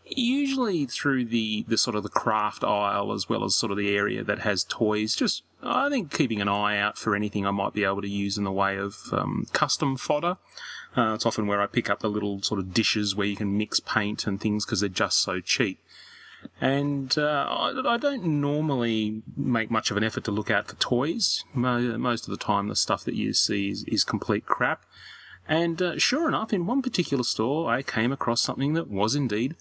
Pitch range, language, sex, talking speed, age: 100-140 Hz, English, male, 220 wpm, 30-49